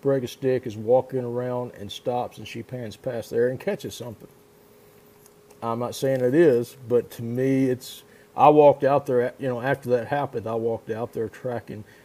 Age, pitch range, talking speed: 40-59, 120-140 Hz, 195 wpm